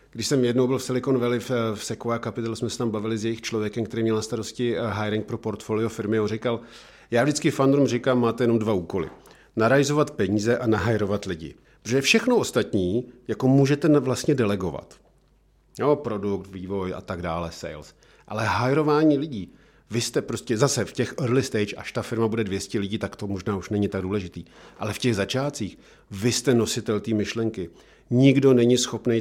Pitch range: 105-125 Hz